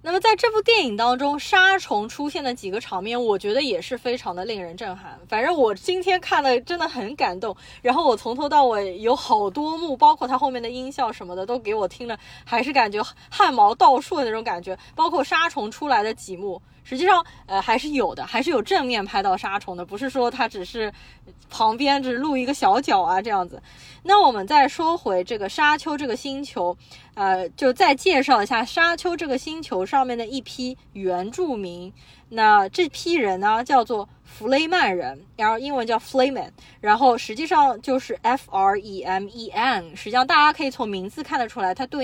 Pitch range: 210-305 Hz